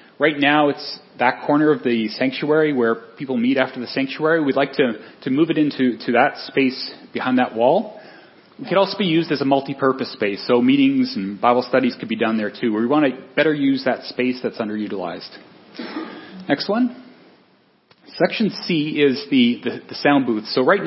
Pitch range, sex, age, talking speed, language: 130-165 Hz, male, 30-49, 195 wpm, English